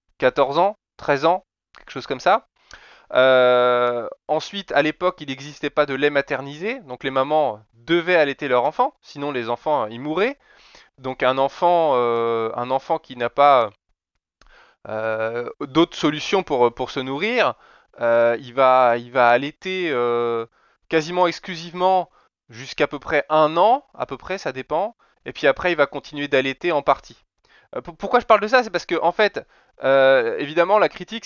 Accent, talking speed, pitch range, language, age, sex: French, 170 wpm, 135-180 Hz, French, 20-39, male